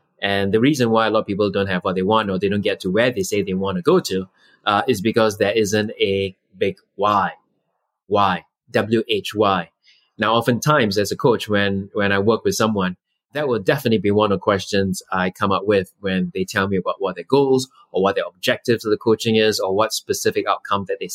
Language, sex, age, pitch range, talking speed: English, male, 20-39, 95-115 Hz, 230 wpm